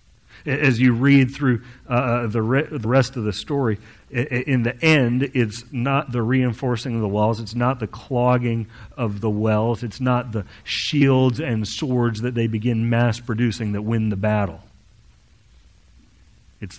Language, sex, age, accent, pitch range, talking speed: English, male, 40-59, American, 100-125 Hz, 165 wpm